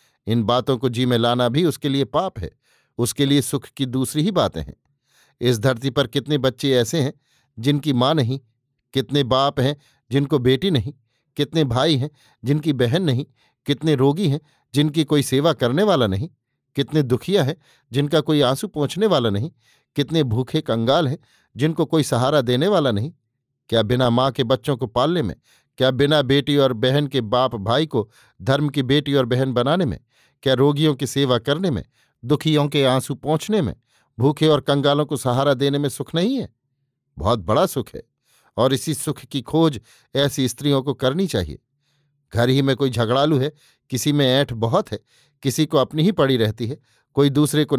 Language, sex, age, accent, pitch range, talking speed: Hindi, male, 50-69, native, 130-150 Hz, 185 wpm